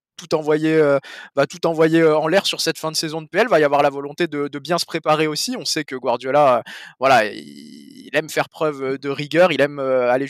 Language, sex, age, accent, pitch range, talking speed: French, male, 20-39, French, 140-170 Hz, 225 wpm